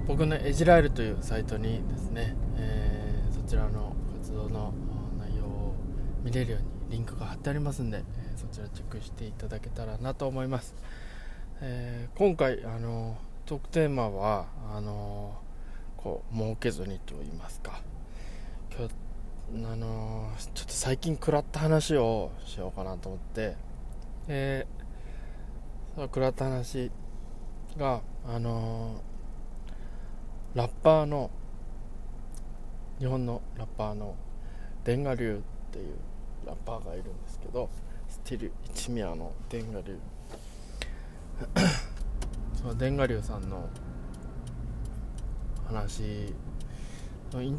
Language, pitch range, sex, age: Japanese, 105-125 Hz, male, 20-39